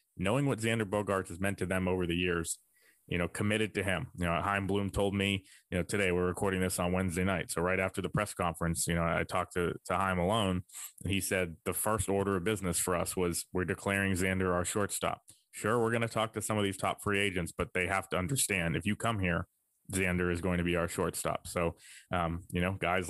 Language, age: English, 20-39